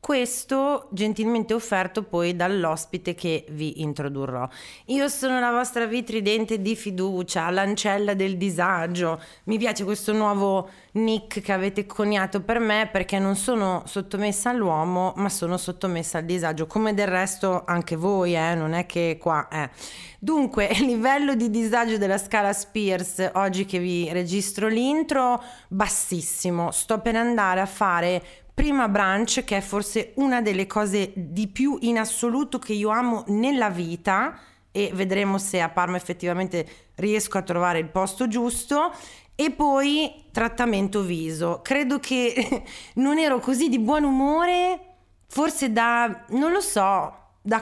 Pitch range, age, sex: 180-235 Hz, 30-49, female